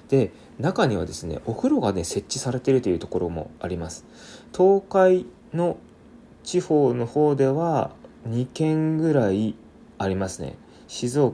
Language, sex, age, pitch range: Japanese, male, 20-39, 100-140 Hz